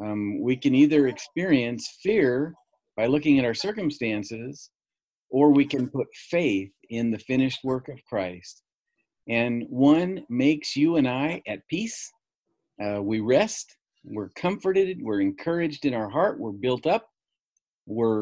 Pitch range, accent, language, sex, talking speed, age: 115-160 Hz, American, English, male, 145 wpm, 50-69